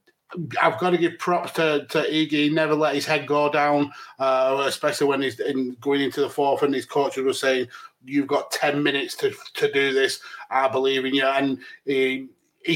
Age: 30-49